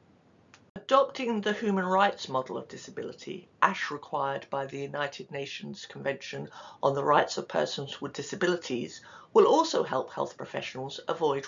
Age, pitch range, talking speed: 50-69, 140-210 Hz, 140 wpm